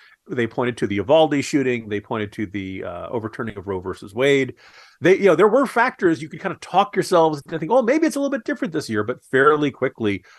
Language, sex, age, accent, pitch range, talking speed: English, male, 40-59, American, 105-145 Hz, 245 wpm